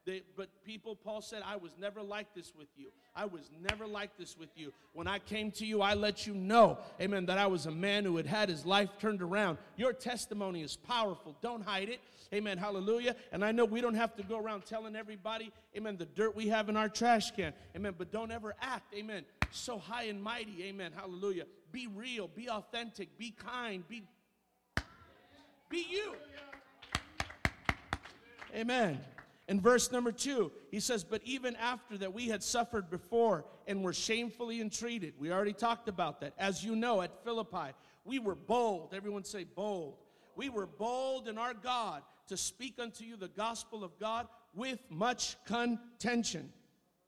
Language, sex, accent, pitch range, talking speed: English, male, American, 195-230 Hz, 180 wpm